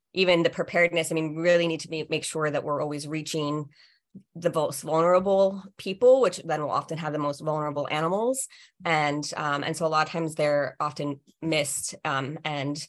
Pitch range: 145-175 Hz